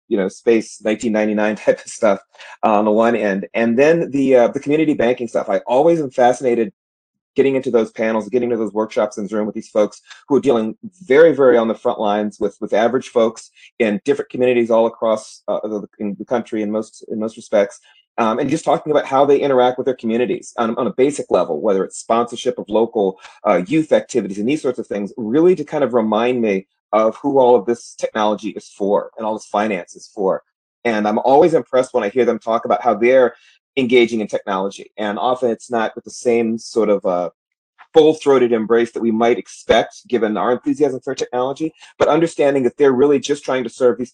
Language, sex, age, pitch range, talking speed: English, male, 30-49, 110-130 Hz, 220 wpm